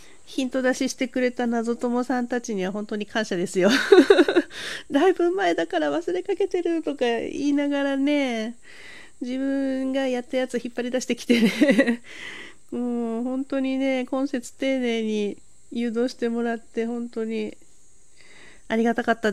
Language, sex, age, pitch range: Japanese, female, 40-59, 225-330 Hz